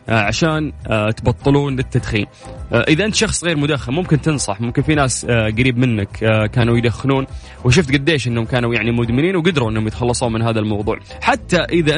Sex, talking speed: male, 155 wpm